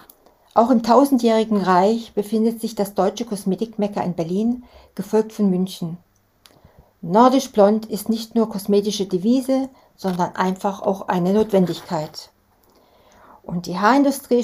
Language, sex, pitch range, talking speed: German, female, 185-235 Hz, 120 wpm